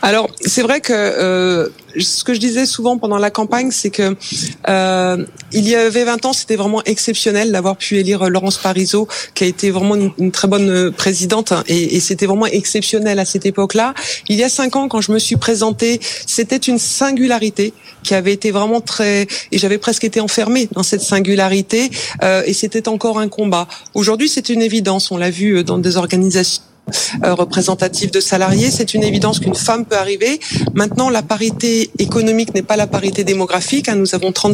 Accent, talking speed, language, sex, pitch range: French, 190 wpm, French, female, 190-225 Hz